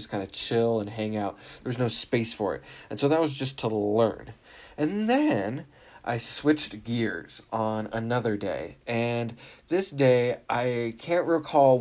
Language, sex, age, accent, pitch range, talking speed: English, male, 20-39, American, 110-145 Hz, 170 wpm